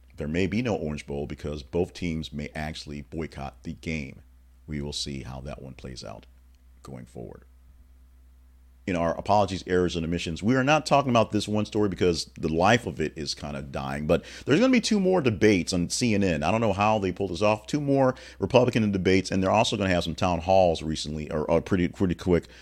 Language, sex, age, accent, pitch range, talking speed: English, male, 40-59, American, 75-110 Hz, 225 wpm